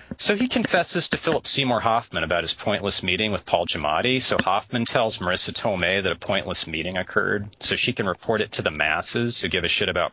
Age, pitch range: 40-59, 95-125 Hz